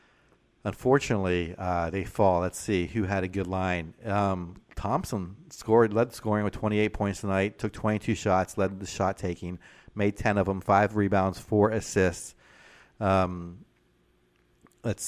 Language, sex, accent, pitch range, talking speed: English, male, American, 90-105 Hz, 145 wpm